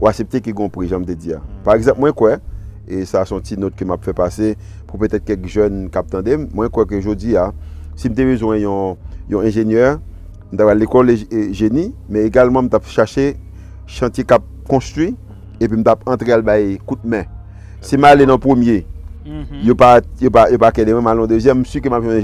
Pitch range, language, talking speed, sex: 95-115 Hz, English, 215 wpm, male